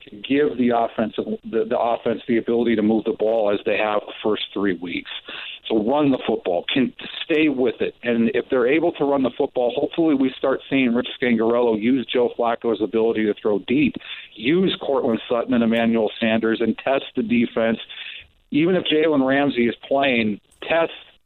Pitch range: 115-145 Hz